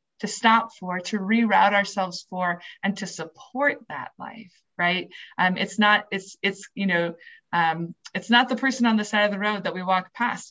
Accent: American